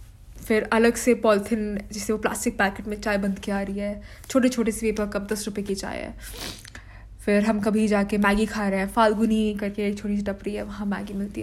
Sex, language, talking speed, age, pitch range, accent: female, Hindi, 230 wpm, 20-39, 180-225 Hz, native